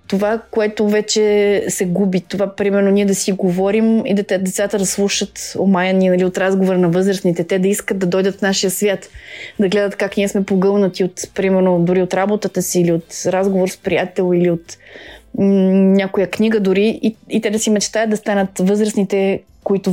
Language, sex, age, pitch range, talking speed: Bulgarian, female, 20-39, 185-205 Hz, 195 wpm